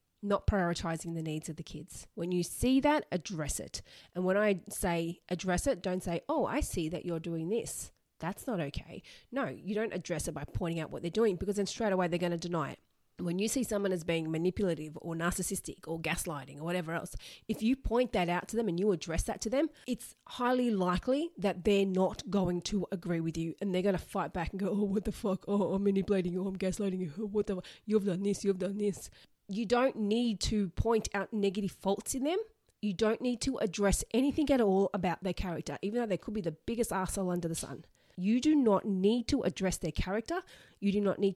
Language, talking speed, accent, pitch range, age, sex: English, 235 wpm, Australian, 175-220 Hz, 30-49, female